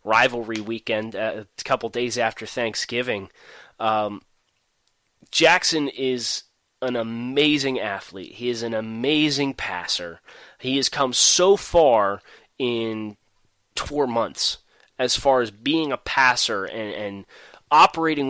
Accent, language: American, English